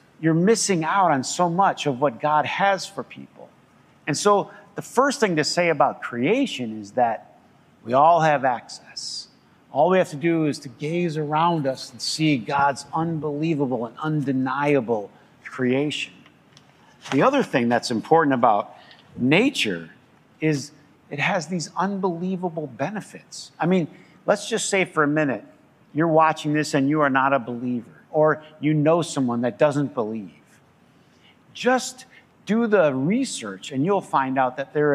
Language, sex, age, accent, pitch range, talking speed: English, male, 50-69, American, 135-175 Hz, 155 wpm